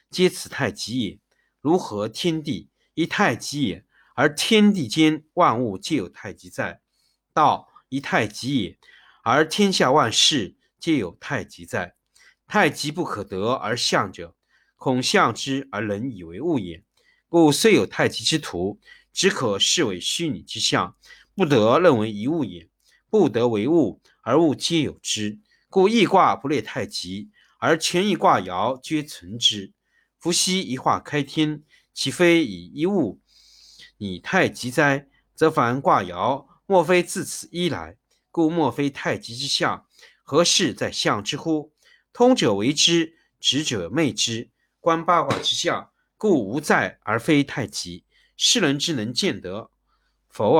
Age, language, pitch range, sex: 50-69, Chinese, 115-170 Hz, male